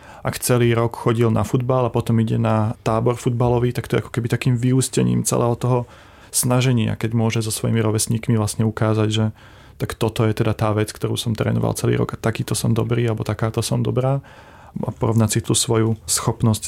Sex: male